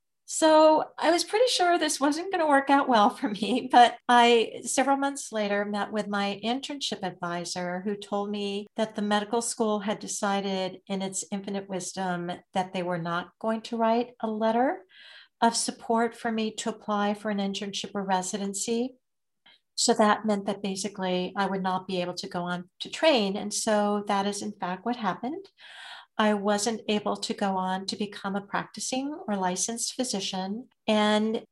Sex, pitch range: female, 200-245 Hz